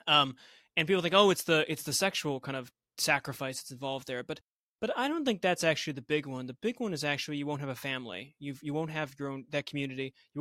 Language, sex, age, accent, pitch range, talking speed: English, male, 20-39, American, 135-175 Hz, 260 wpm